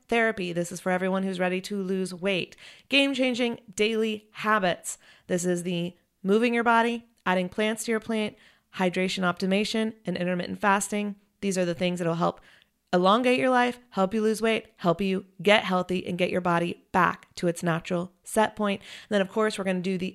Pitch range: 180-215 Hz